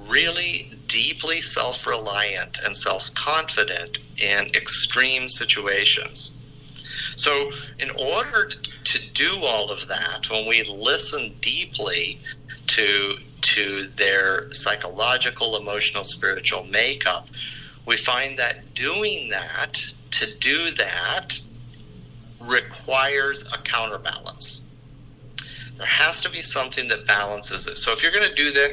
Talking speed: 110 wpm